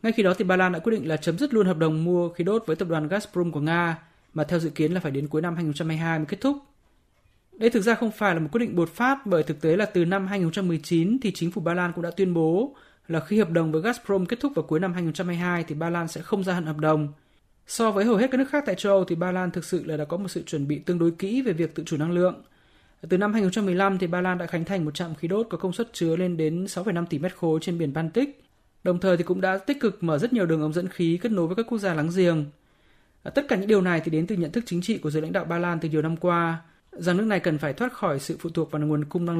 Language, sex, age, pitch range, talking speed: Vietnamese, male, 20-39, 165-200 Hz, 305 wpm